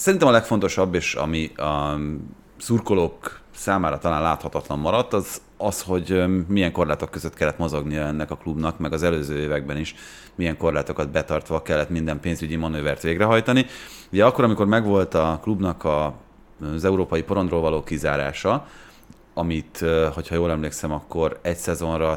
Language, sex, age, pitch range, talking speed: Hungarian, male, 30-49, 75-95 Hz, 145 wpm